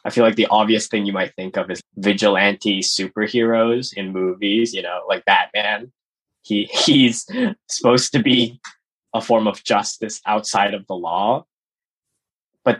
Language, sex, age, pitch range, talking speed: English, male, 10-29, 100-120 Hz, 155 wpm